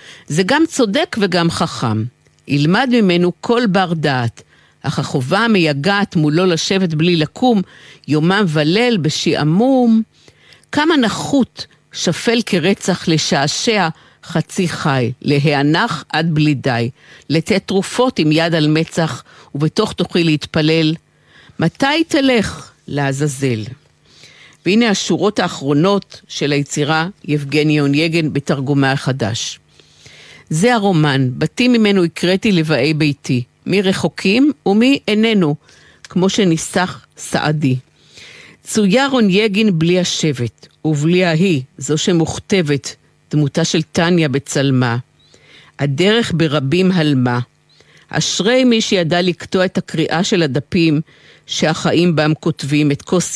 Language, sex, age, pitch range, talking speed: Hebrew, female, 50-69, 150-195 Hz, 105 wpm